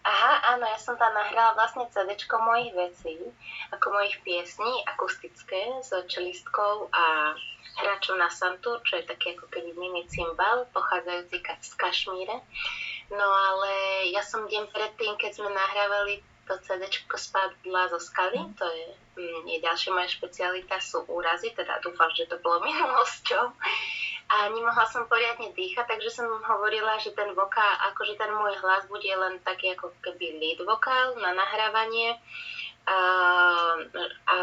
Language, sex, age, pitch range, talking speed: Slovak, female, 20-39, 180-220 Hz, 145 wpm